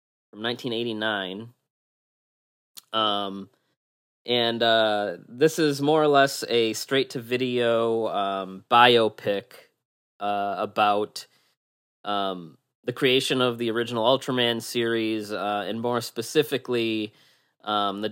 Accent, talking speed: American, 115 wpm